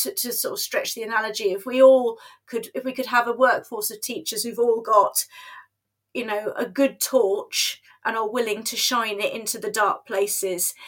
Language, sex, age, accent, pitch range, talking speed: English, female, 30-49, British, 210-265 Hz, 205 wpm